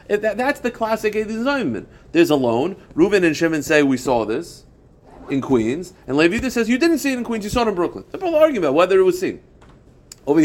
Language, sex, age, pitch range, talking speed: English, male, 40-59, 130-205 Hz, 230 wpm